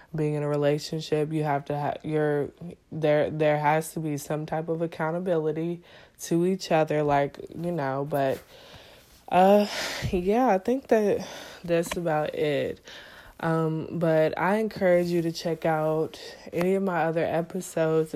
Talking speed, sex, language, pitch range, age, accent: 150 wpm, female, English, 150-175 Hz, 20-39, American